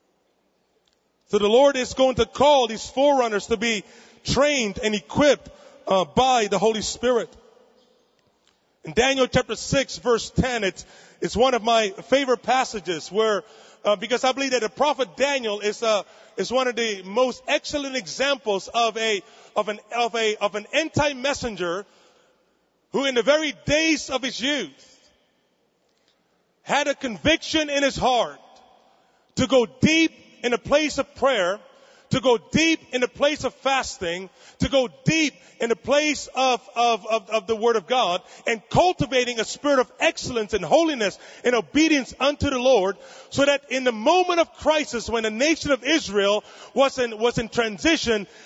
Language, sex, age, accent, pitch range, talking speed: English, male, 30-49, American, 220-275 Hz, 165 wpm